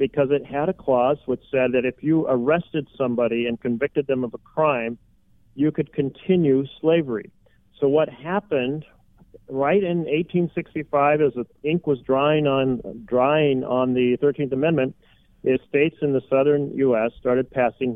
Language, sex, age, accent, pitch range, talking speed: English, male, 40-59, American, 125-150 Hz, 155 wpm